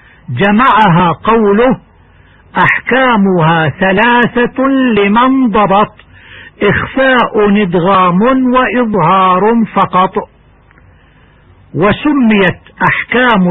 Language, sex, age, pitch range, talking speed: Arabic, male, 60-79, 175-235 Hz, 55 wpm